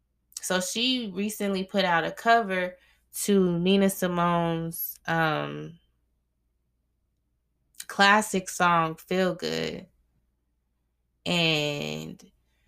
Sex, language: female, English